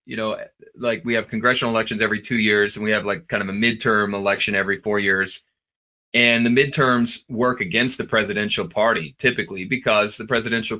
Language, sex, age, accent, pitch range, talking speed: English, male, 30-49, American, 105-130 Hz, 190 wpm